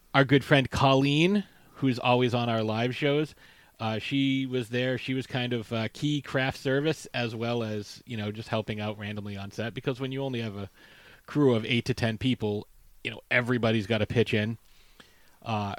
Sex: male